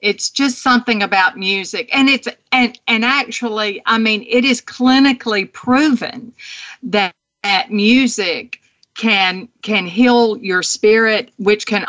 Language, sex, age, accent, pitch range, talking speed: English, female, 50-69, American, 180-225 Hz, 130 wpm